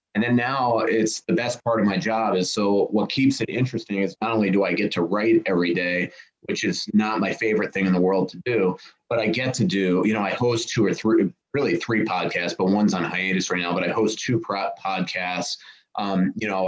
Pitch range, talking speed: 95-115 Hz, 240 wpm